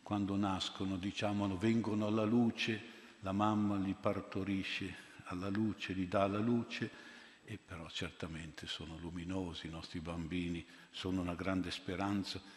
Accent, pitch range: native, 85-105 Hz